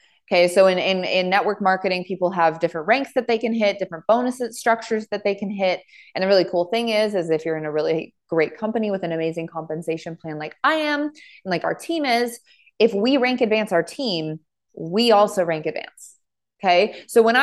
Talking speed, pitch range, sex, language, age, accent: 215 wpm, 170-215 Hz, female, English, 20-39, American